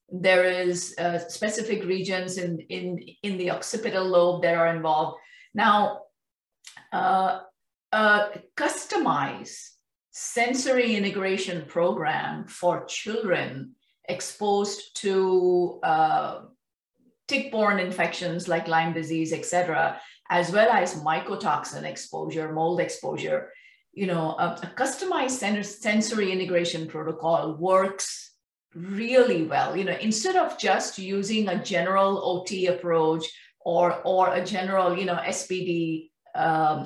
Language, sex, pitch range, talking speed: English, female, 175-215 Hz, 115 wpm